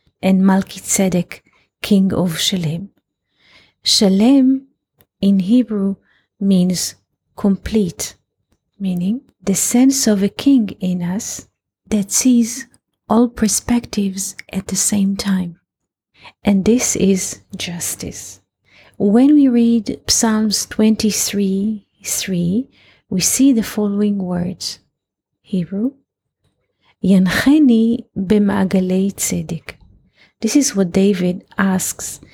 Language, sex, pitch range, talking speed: English, female, 190-225 Hz, 85 wpm